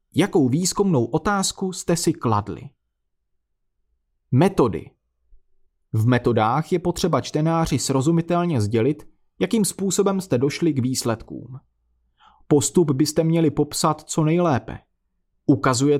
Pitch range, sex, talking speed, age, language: 110-175 Hz, male, 100 wpm, 30-49, Czech